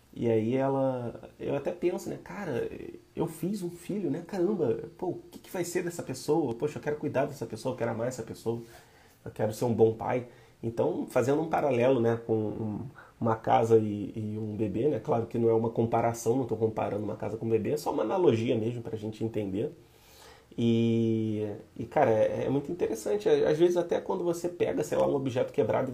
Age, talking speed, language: 30-49, 215 wpm, Portuguese